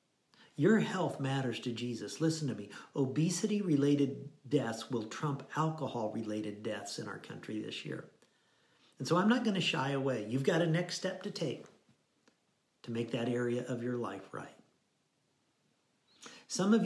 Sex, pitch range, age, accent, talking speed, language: male, 115-150 Hz, 50-69, American, 155 wpm, English